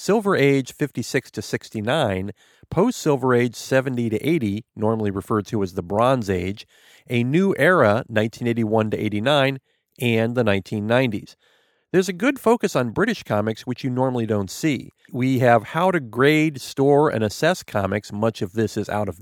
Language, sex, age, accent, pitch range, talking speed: English, male, 40-59, American, 110-150 Hz, 170 wpm